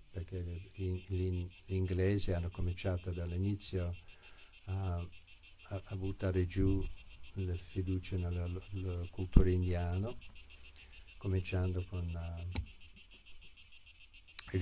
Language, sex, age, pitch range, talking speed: Italian, male, 50-69, 85-95 Hz, 85 wpm